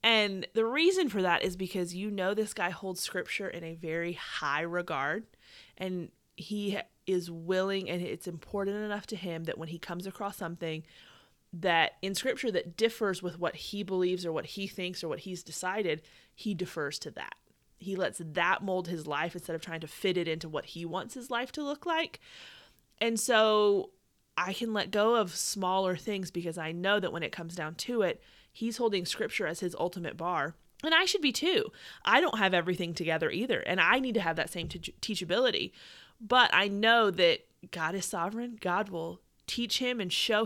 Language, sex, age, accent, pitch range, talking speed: English, female, 30-49, American, 175-220 Hz, 200 wpm